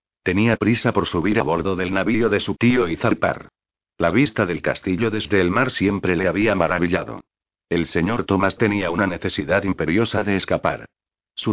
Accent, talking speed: Spanish, 175 wpm